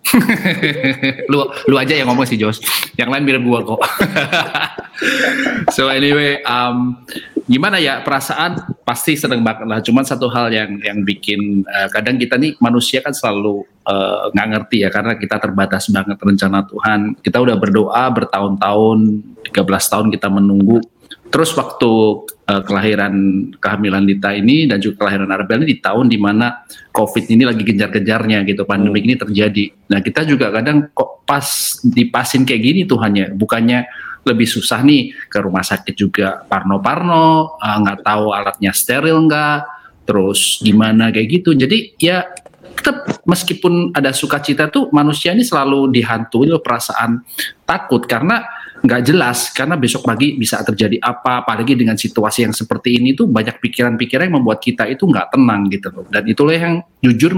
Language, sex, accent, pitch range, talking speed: Indonesian, male, native, 105-140 Hz, 155 wpm